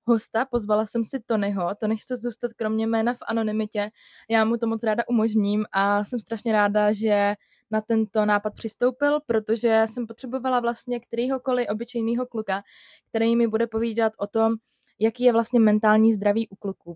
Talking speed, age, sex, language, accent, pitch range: 170 wpm, 20-39, female, Czech, native, 195-225 Hz